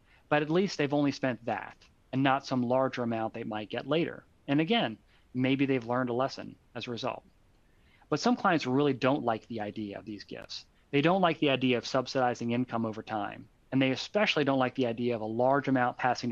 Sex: male